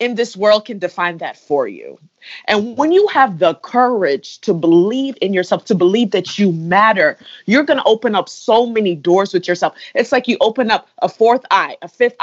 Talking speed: 205 wpm